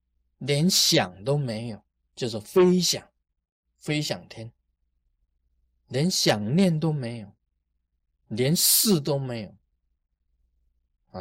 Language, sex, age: Chinese, male, 20-39